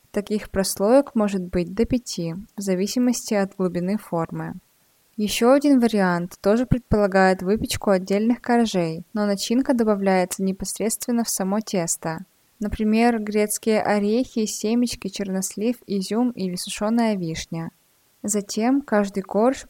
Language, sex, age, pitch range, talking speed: Russian, female, 20-39, 185-220 Hz, 115 wpm